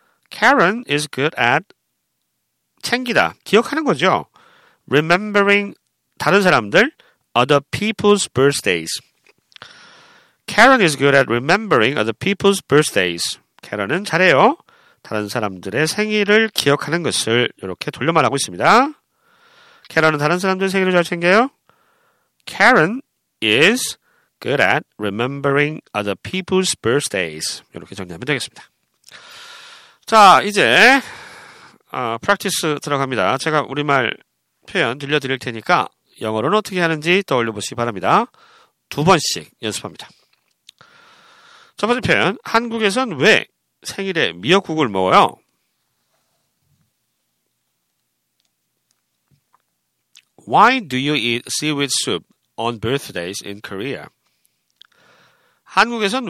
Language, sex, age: Korean, male, 40-59